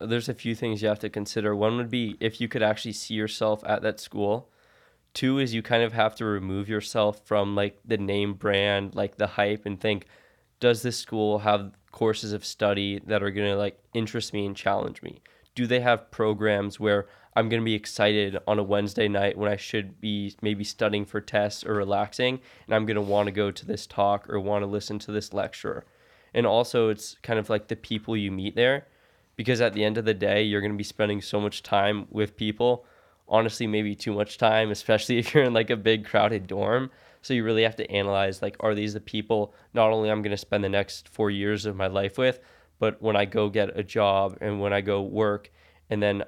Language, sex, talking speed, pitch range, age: English, male, 230 wpm, 100-110 Hz, 20-39